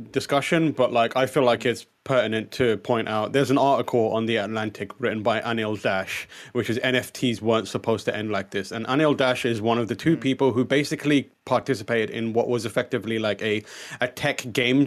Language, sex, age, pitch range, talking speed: English, male, 20-39, 115-150 Hz, 205 wpm